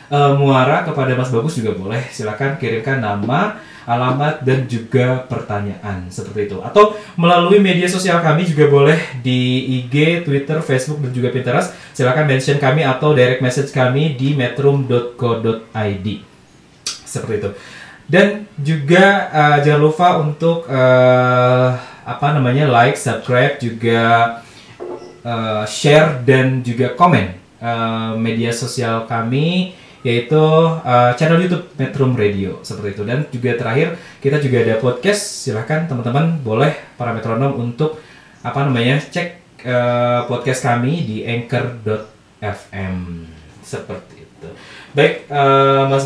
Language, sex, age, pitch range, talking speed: Indonesian, male, 20-39, 115-150 Hz, 125 wpm